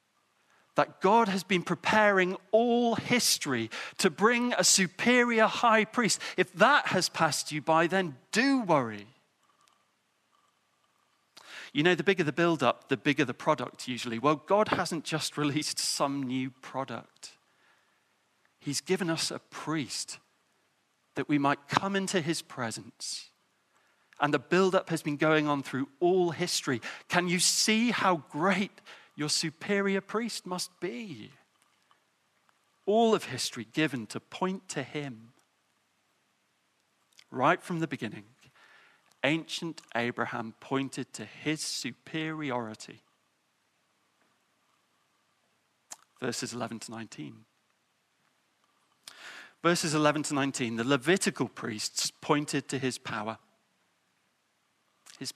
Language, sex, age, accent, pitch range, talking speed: English, male, 40-59, British, 135-190 Hz, 115 wpm